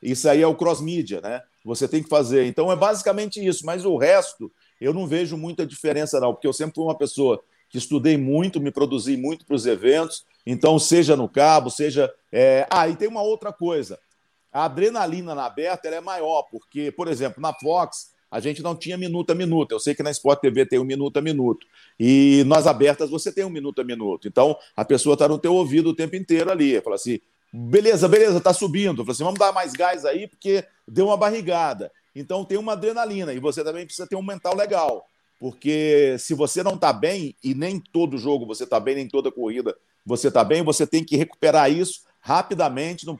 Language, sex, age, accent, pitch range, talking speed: Portuguese, male, 50-69, Brazilian, 145-190 Hz, 220 wpm